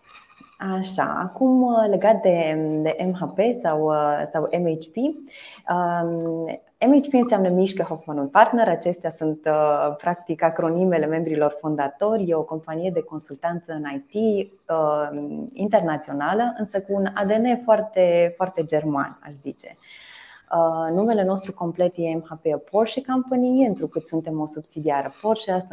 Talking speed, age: 125 wpm, 20-39